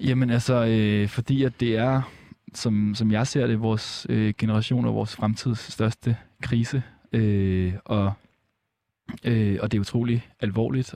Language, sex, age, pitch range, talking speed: Danish, male, 20-39, 100-115 Hz, 155 wpm